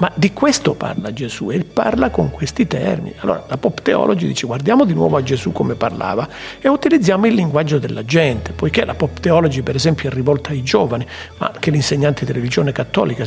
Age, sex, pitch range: 50-69, male, 145-200 Hz